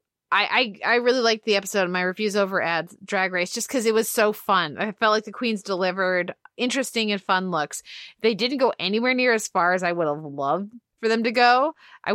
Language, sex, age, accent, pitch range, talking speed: English, female, 20-39, American, 185-240 Hz, 230 wpm